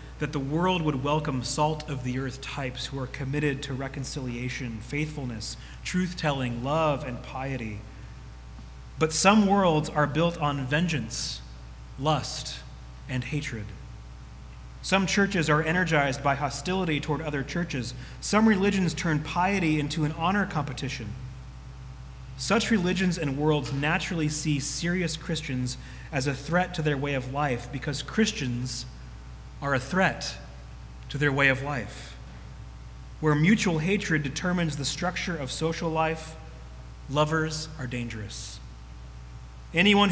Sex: male